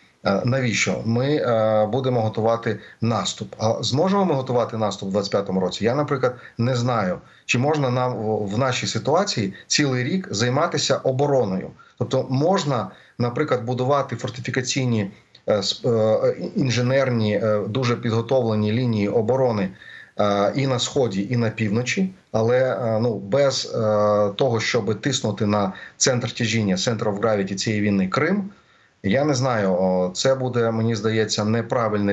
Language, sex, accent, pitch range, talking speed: Ukrainian, male, native, 105-125 Hz, 135 wpm